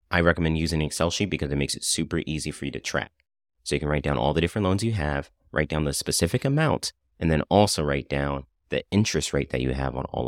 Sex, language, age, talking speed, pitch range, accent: male, English, 30-49, 265 wpm, 70-85 Hz, American